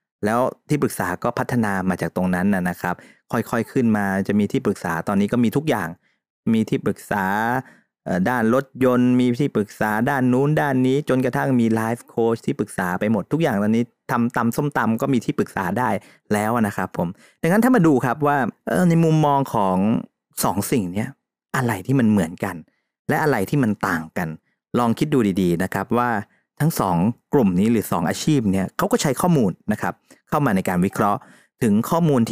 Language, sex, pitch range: Thai, male, 105-135 Hz